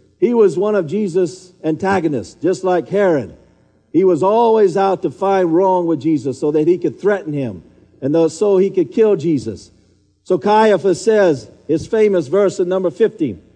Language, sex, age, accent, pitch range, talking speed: English, male, 50-69, American, 145-200 Hz, 175 wpm